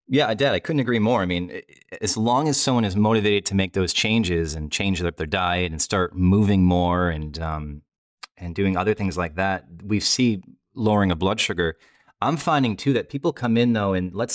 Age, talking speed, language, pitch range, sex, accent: 30-49, 215 wpm, English, 90-110 Hz, male, American